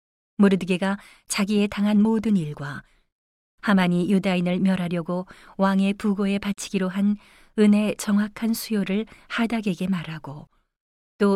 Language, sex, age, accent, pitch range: Korean, female, 40-59, native, 175-205 Hz